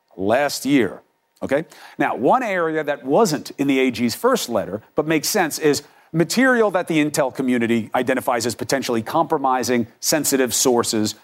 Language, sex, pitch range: English, male, 130-185 Hz